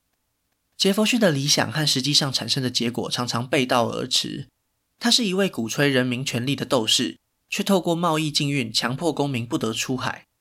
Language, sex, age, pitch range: Chinese, male, 20-39, 125-160 Hz